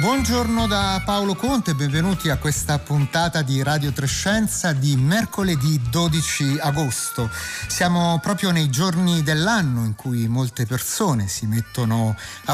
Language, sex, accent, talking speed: Italian, male, native, 130 wpm